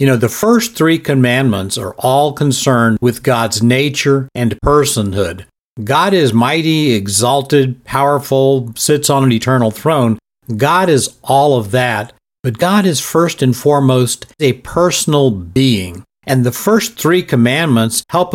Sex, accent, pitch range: male, American, 120-150 Hz